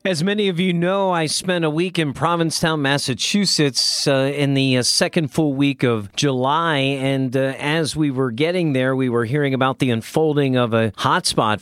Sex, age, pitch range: male, 40-59, 130-165 Hz